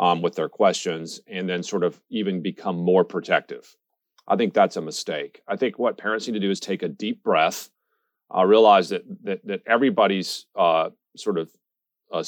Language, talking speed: English, 190 wpm